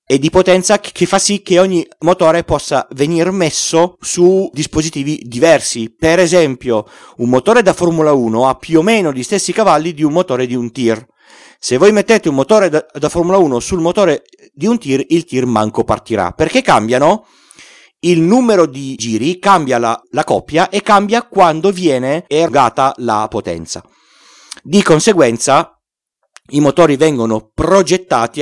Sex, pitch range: male, 130-185 Hz